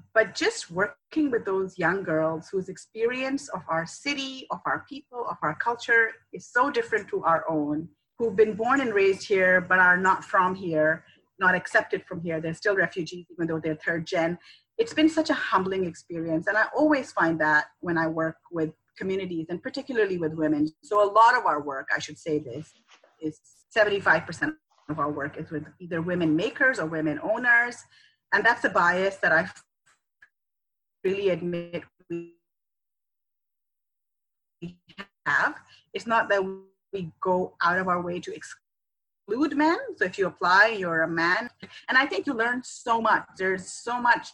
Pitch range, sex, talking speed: 160-225 Hz, female, 175 wpm